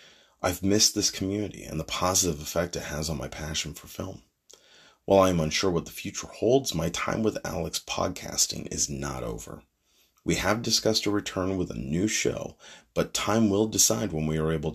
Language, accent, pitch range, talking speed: English, American, 80-105 Hz, 195 wpm